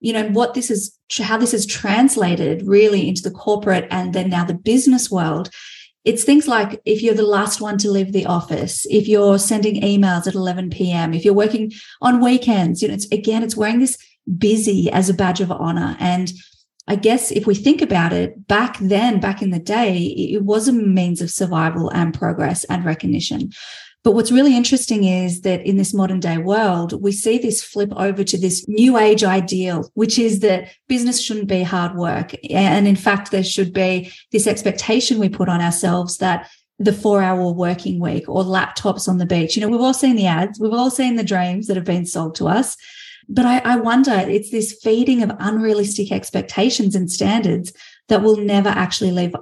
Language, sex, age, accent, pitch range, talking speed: English, female, 30-49, Australian, 185-225 Hz, 200 wpm